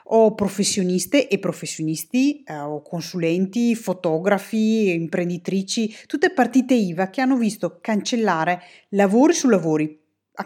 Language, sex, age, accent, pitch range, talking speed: Italian, female, 30-49, native, 180-245 Hz, 105 wpm